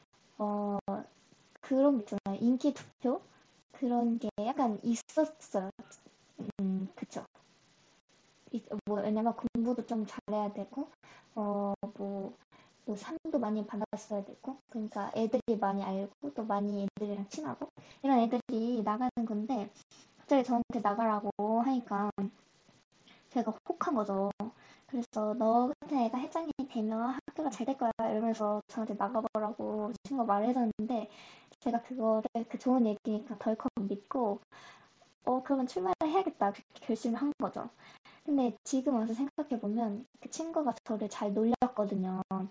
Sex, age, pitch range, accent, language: male, 20-39, 210-260 Hz, native, Korean